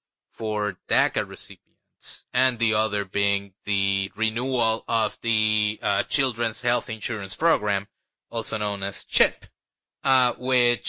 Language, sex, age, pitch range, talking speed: English, male, 30-49, 100-115 Hz, 120 wpm